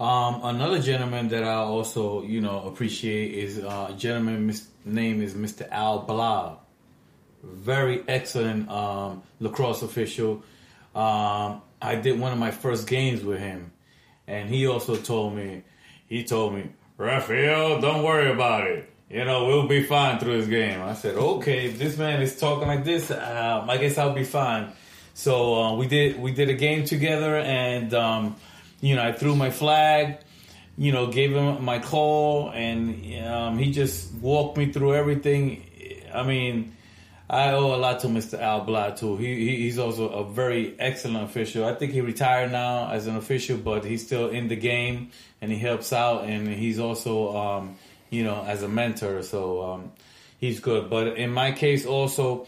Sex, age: male, 30-49